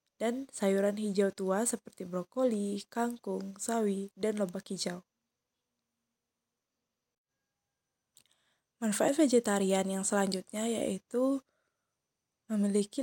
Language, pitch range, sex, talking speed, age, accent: Indonesian, 195-230 Hz, female, 80 wpm, 20-39, native